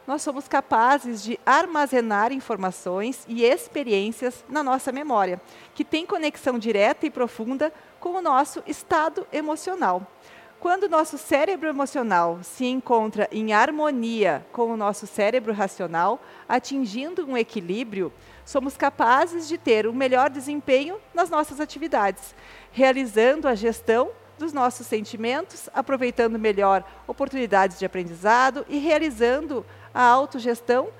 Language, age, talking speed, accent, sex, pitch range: Portuguese, 40-59, 125 wpm, Brazilian, female, 210-290 Hz